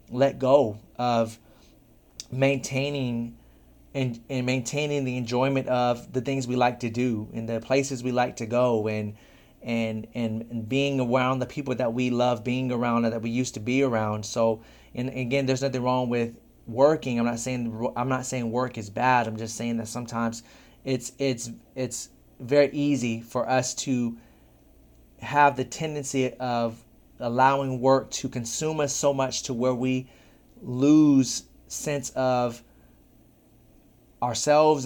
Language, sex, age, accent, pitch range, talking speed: English, male, 30-49, American, 120-135 Hz, 155 wpm